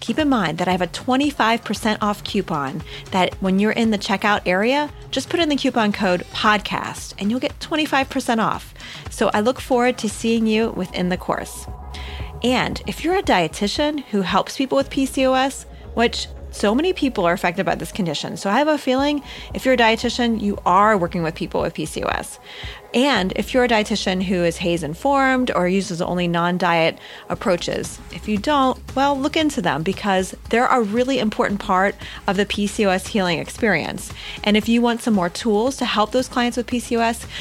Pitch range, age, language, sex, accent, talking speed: 190-255 Hz, 30-49, English, female, American, 190 wpm